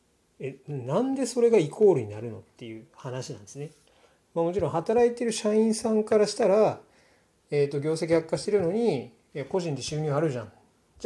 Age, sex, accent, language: 40-59, male, native, Japanese